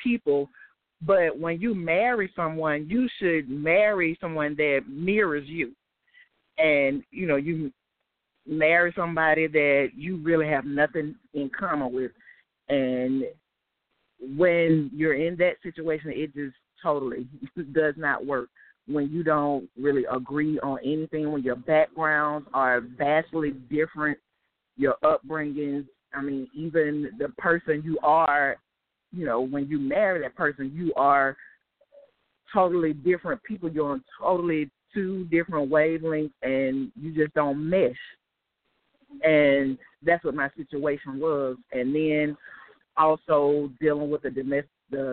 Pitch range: 140-170 Hz